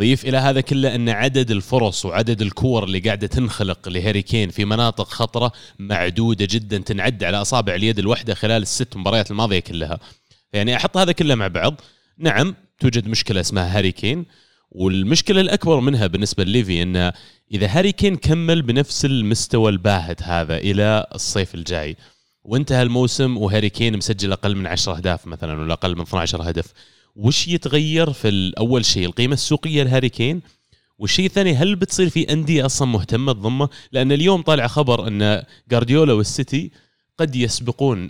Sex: male